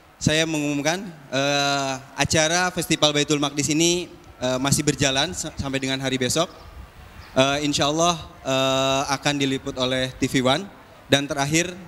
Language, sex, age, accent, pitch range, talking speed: Indonesian, male, 20-39, native, 130-150 Hz, 135 wpm